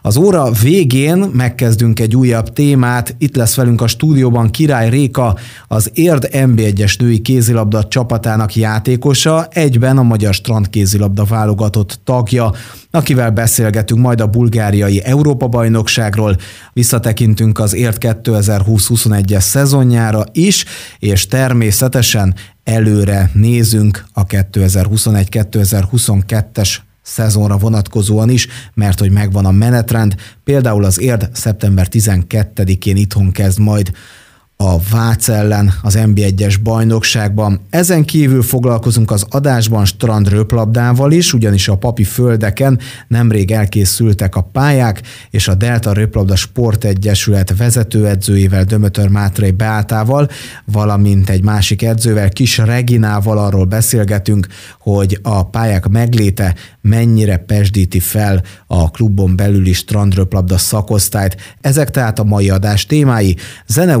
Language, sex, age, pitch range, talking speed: Hungarian, male, 30-49, 100-120 Hz, 110 wpm